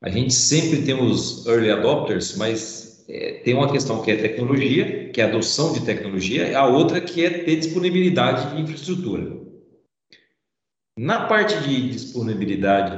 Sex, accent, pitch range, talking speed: male, Brazilian, 110-145 Hz, 155 wpm